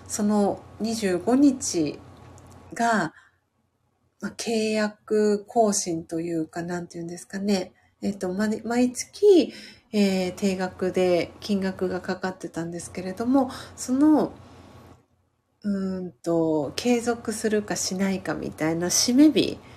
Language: Japanese